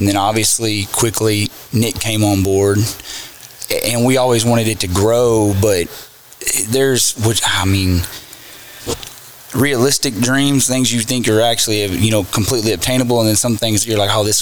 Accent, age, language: American, 20-39, English